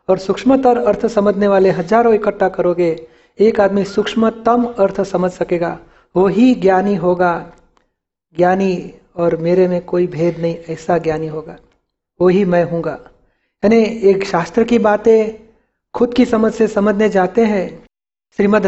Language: Gujarati